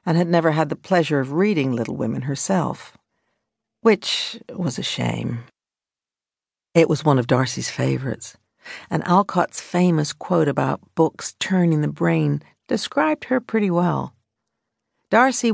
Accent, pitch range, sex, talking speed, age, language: American, 135-180 Hz, female, 135 wpm, 60-79, English